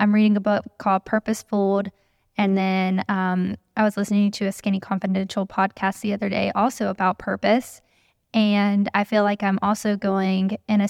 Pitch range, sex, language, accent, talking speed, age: 190-220 Hz, female, English, American, 175 wpm, 10-29